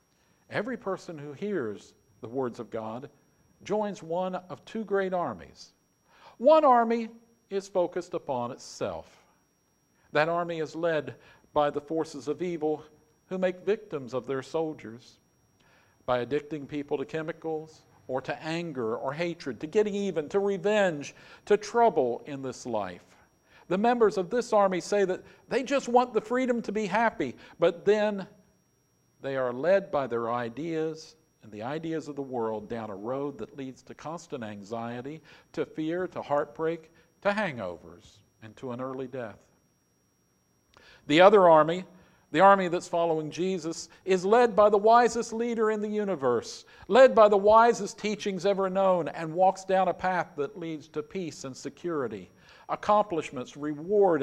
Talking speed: 155 wpm